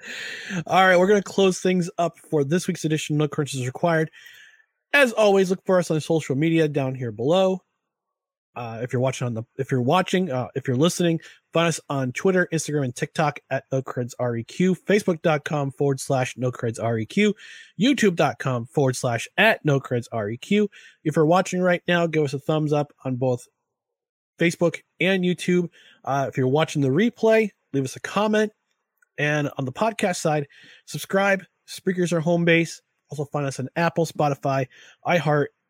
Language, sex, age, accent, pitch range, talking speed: English, male, 30-49, American, 140-185 Hz, 180 wpm